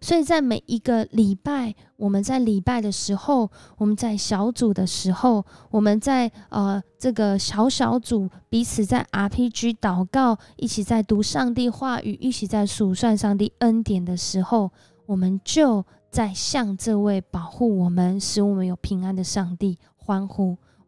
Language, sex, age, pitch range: Chinese, female, 20-39, 190-235 Hz